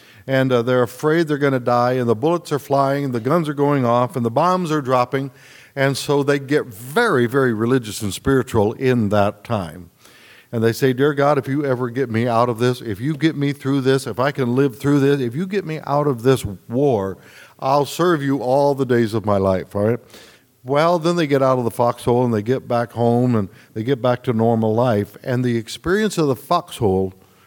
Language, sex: English, male